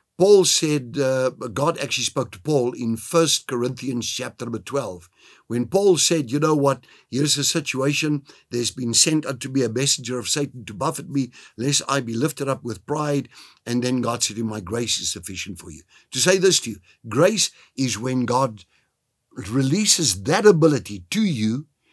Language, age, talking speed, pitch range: English, 60-79, 185 wpm, 110-150 Hz